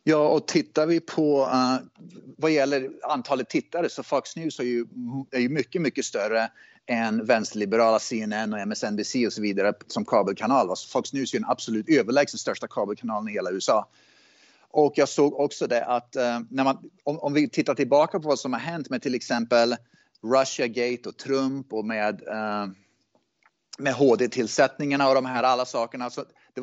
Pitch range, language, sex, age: 120-150 Hz, Swedish, male, 30-49